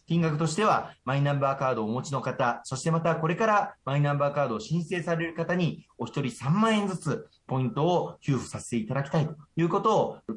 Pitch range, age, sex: 120-160 Hz, 40-59, male